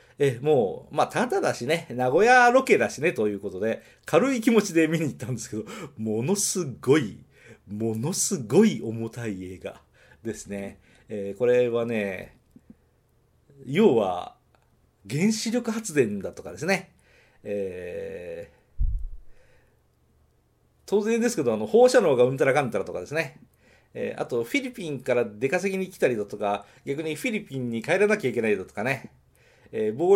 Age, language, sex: 40-59, Japanese, male